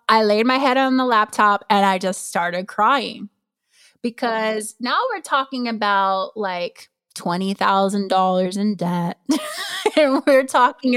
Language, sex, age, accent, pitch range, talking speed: English, female, 20-39, American, 205-255 Hz, 130 wpm